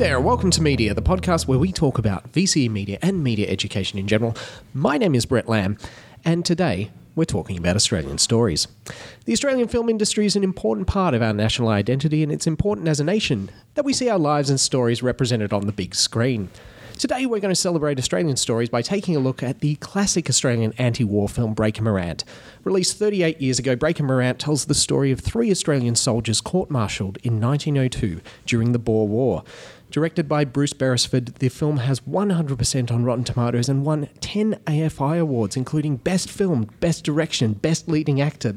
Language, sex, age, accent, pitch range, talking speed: English, male, 30-49, Australian, 115-160 Hz, 190 wpm